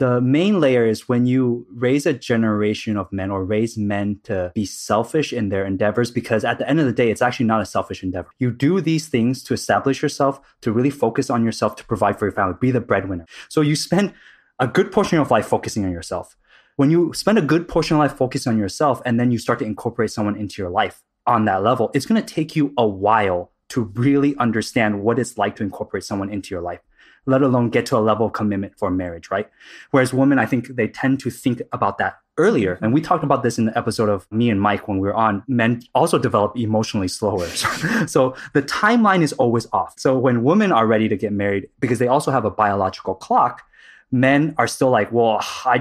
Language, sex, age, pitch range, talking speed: English, male, 20-39, 105-135 Hz, 235 wpm